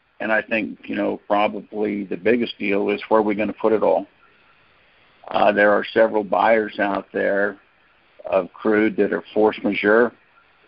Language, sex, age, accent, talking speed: English, male, 50-69, American, 175 wpm